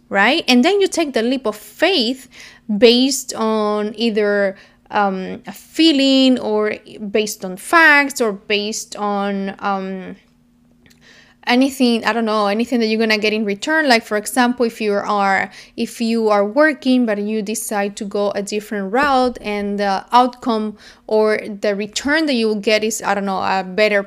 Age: 20-39